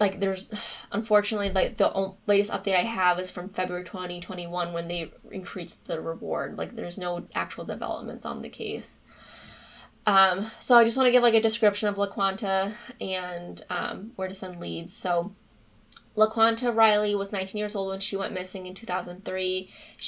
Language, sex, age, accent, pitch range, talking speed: English, female, 20-39, American, 185-205 Hz, 170 wpm